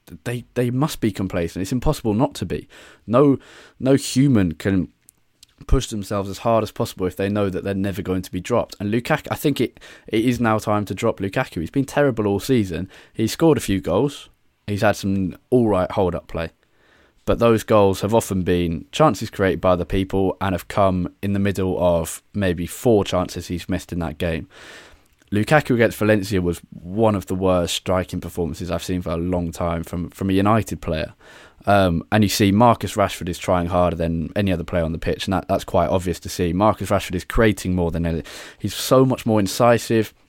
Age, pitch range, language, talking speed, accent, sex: 20-39, 90-115 Hz, English, 210 wpm, British, male